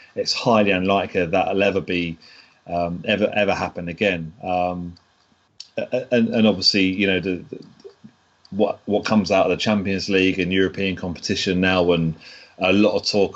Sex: male